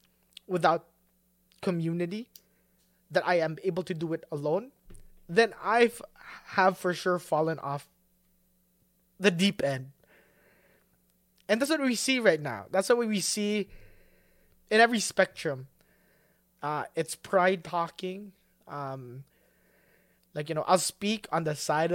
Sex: male